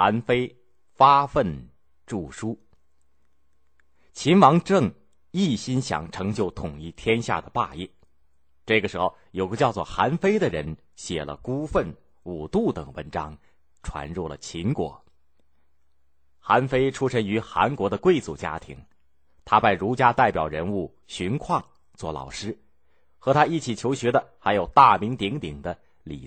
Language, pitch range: Chinese, 70-115 Hz